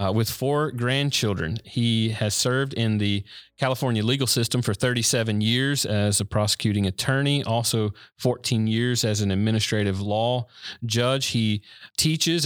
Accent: American